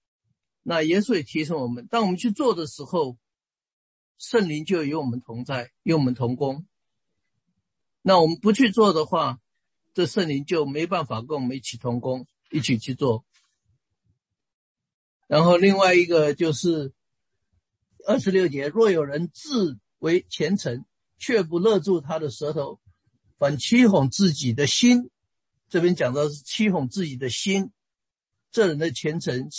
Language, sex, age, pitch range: English, male, 50-69, 125-185 Hz